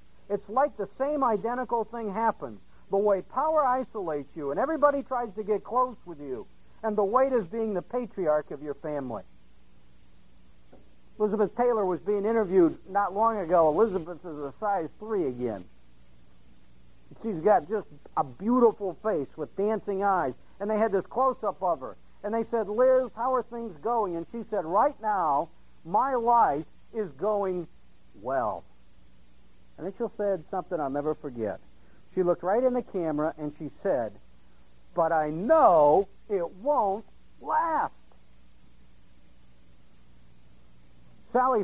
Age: 60-79